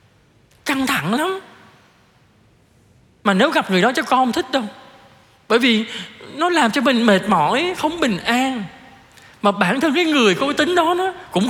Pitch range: 165-250 Hz